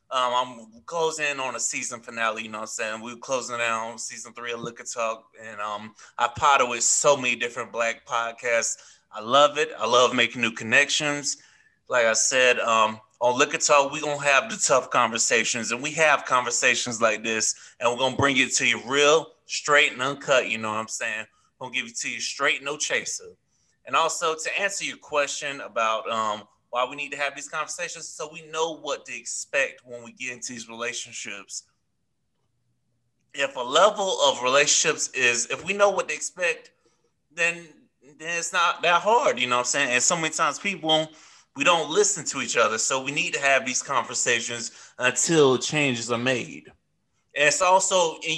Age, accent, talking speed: 20-39, American, 200 wpm